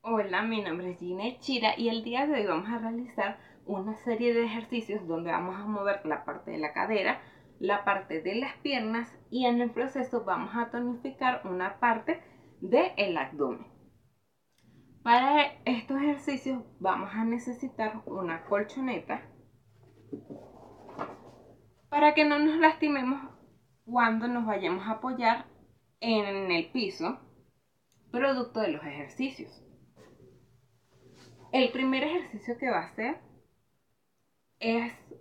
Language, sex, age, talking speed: English, female, 20-39, 130 wpm